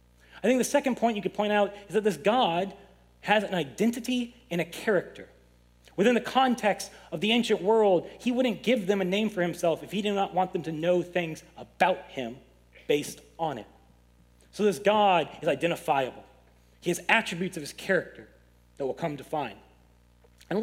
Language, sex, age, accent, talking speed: English, male, 30-49, American, 190 wpm